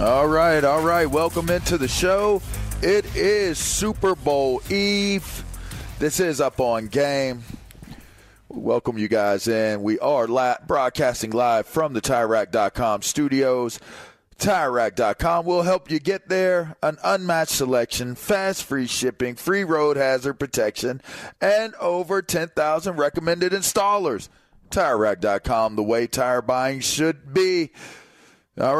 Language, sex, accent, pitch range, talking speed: English, male, American, 130-165 Hz, 125 wpm